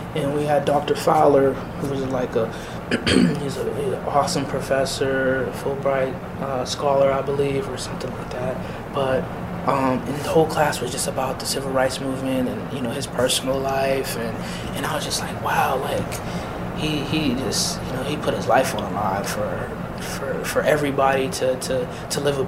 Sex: male